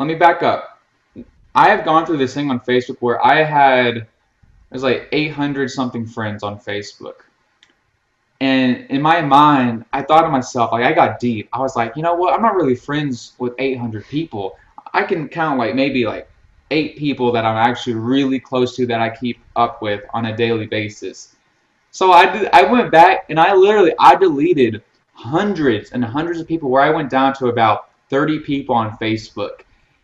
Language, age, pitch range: English, 20-39, 120-165 Hz